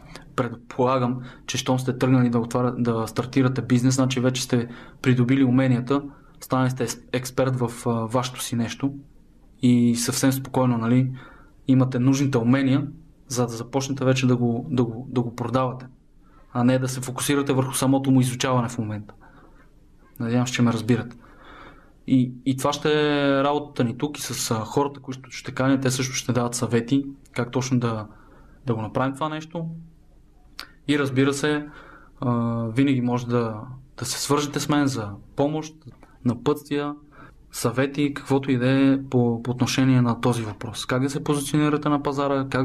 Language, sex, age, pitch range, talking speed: Bulgarian, male, 20-39, 125-140 Hz, 165 wpm